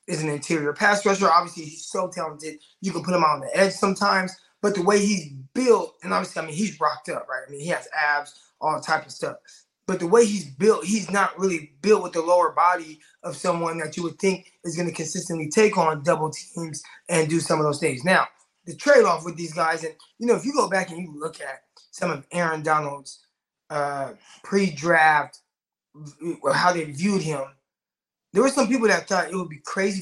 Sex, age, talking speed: male, 20-39, 225 wpm